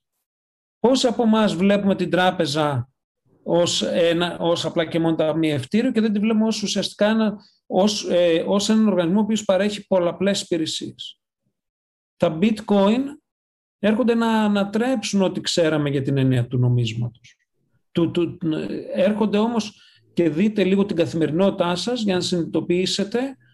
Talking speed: 145 wpm